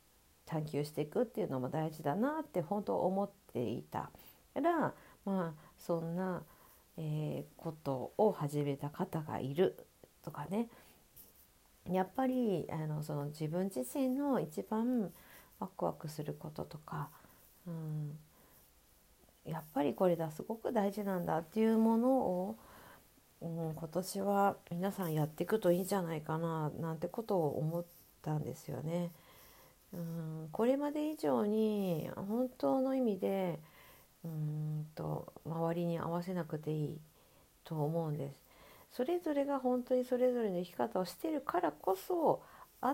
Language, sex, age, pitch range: Japanese, female, 50-69, 155-215 Hz